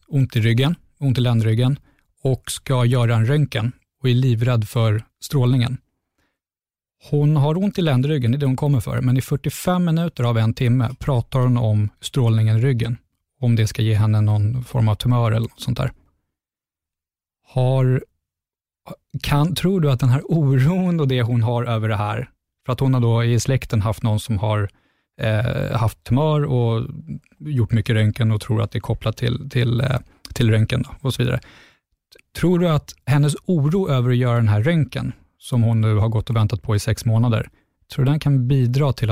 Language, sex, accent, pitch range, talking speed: Swedish, male, native, 110-135 Hz, 190 wpm